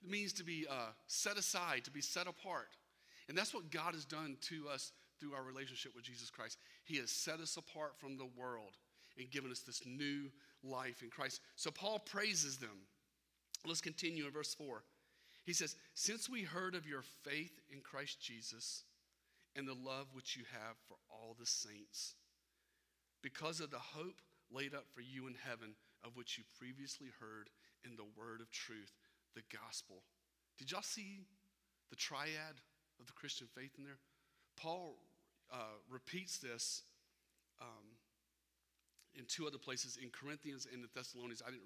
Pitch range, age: 120-155 Hz, 40-59